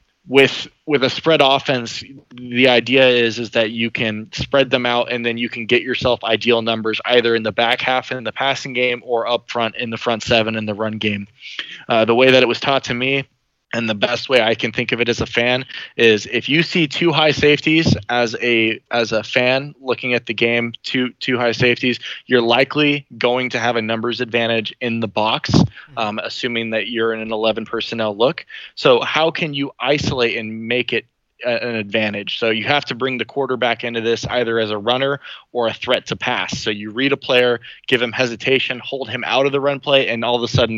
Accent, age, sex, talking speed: American, 20-39, male, 225 wpm